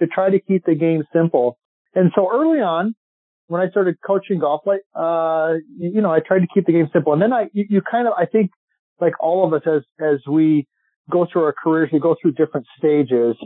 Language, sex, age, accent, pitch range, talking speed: English, male, 40-59, American, 155-195 Hz, 230 wpm